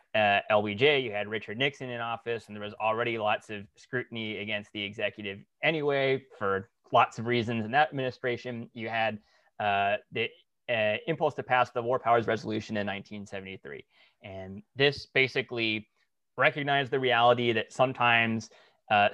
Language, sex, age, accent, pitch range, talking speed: English, male, 20-39, American, 105-125 Hz, 155 wpm